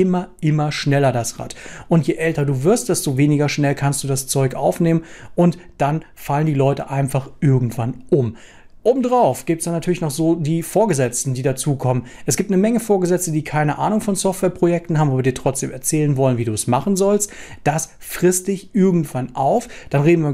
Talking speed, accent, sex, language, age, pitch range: 200 wpm, German, male, German, 40-59, 135-170 Hz